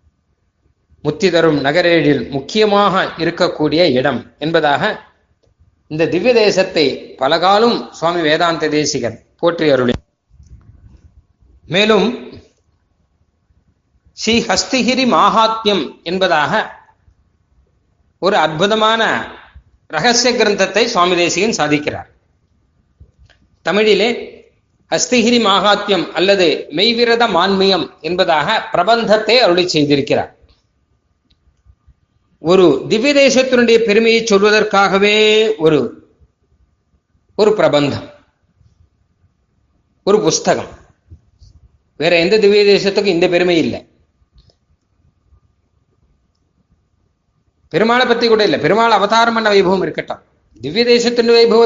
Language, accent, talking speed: Tamil, native, 70 wpm